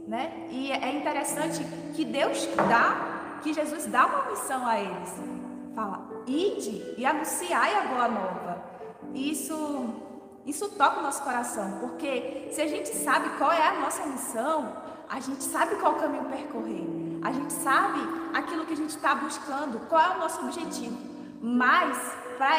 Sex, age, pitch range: female, 20-39, 270-335 Hz